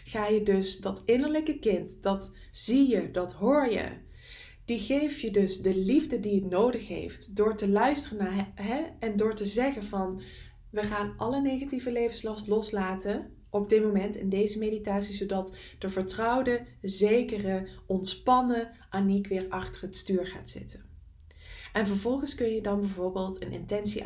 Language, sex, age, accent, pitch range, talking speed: English, female, 20-39, Dutch, 190-230 Hz, 155 wpm